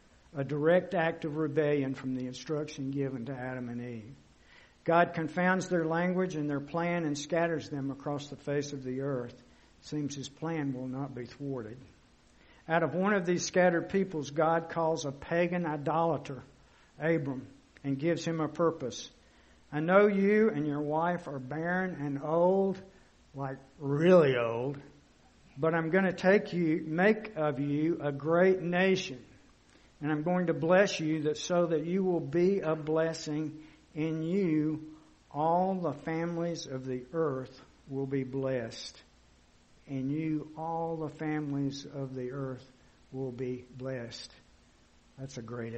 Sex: male